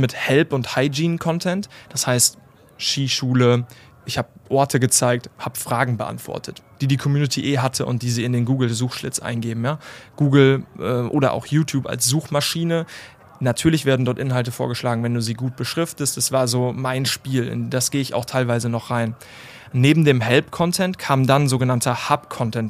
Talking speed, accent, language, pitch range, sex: 165 wpm, German, German, 125-140 Hz, male